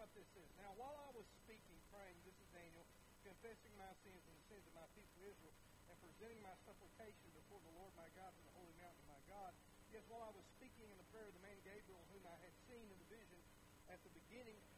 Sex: male